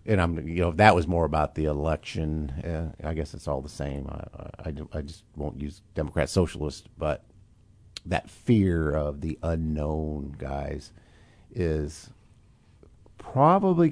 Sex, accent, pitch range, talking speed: male, American, 75-105 Hz, 150 wpm